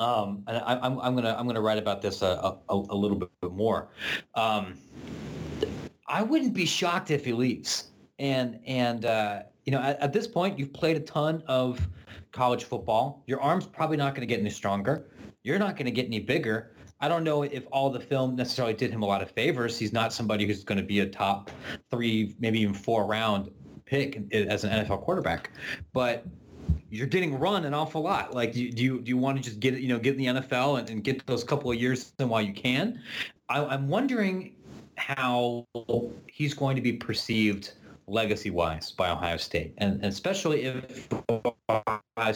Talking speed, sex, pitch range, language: 195 wpm, male, 105-135 Hz, English